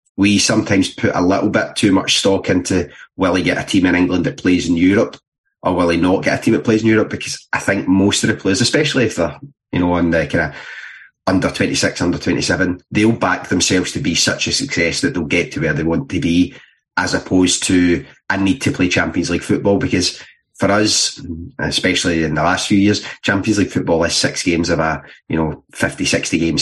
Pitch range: 90-100 Hz